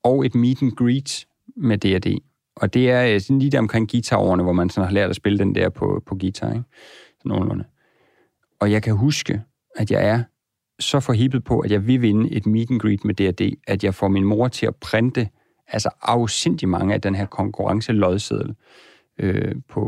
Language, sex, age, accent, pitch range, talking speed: Danish, male, 40-59, native, 100-120 Hz, 195 wpm